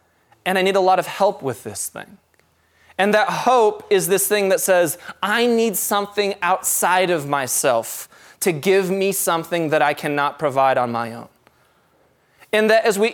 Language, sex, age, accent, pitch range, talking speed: English, male, 20-39, American, 145-220 Hz, 180 wpm